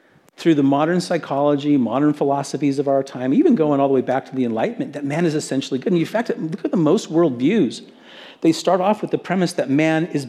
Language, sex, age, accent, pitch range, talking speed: English, male, 50-69, American, 160-220 Hz, 235 wpm